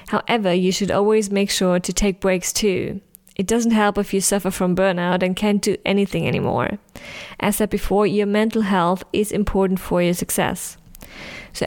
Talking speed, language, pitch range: 180 wpm, English, 185-210 Hz